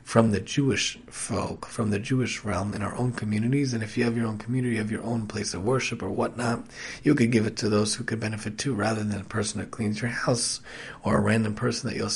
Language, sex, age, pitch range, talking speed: English, male, 40-59, 105-130 Hz, 250 wpm